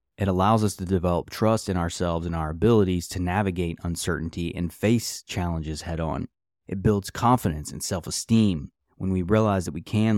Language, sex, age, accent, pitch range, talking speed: English, male, 20-39, American, 85-110 Hz, 170 wpm